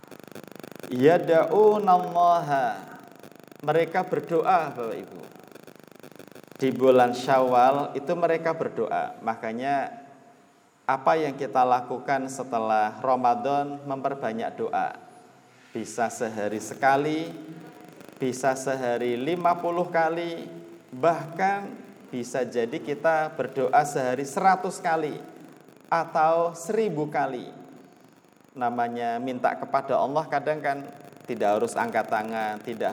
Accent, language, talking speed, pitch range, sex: native, Indonesian, 90 wpm, 120-160 Hz, male